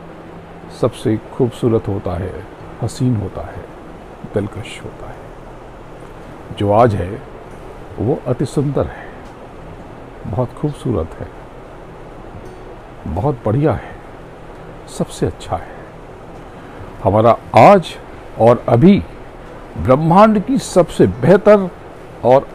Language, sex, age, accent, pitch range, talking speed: Hindi, male, 60-79, native, 100-150 Hz, 95 wpm